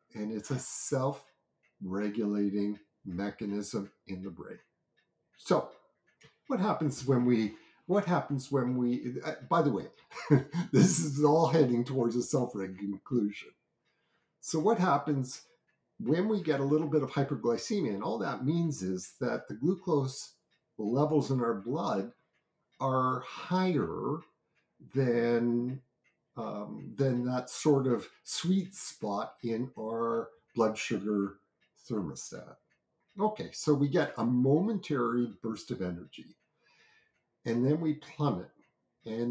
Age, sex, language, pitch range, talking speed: 50-69, male, English, 115-155 Hz, 125 wpm